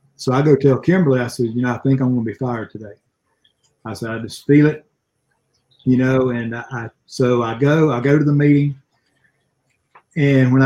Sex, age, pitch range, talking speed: male, 40-59, 125-140 Hz, 205 wpm